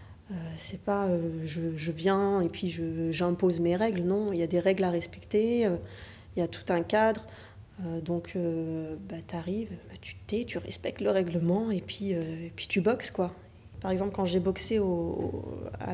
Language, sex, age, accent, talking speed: French, female, 20-39, French, 220 wpm